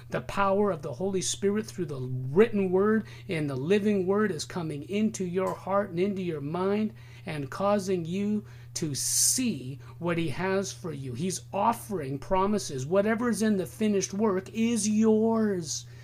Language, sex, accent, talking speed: English, male, American, 165 wpm